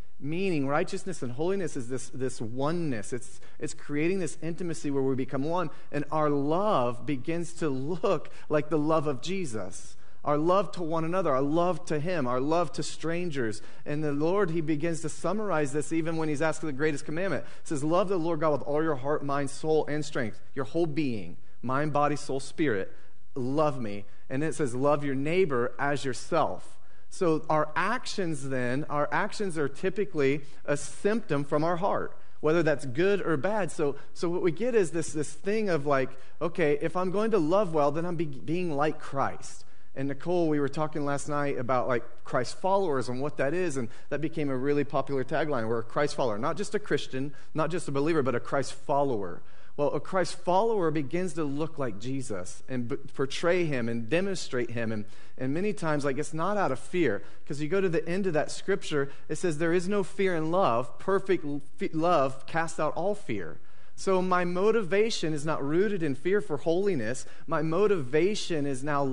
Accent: American